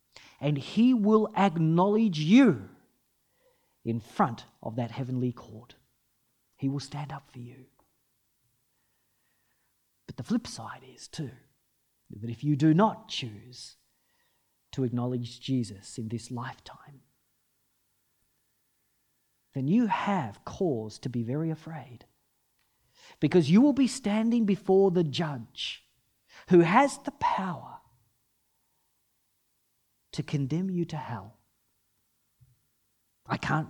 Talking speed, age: 110 wpm, 40-59